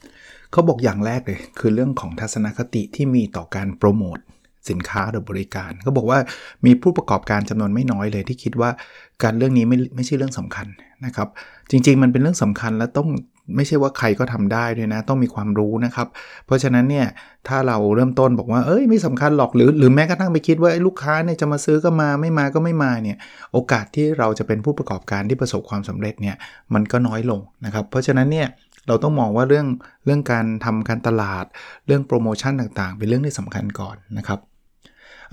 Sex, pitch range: male, 105-135 Hz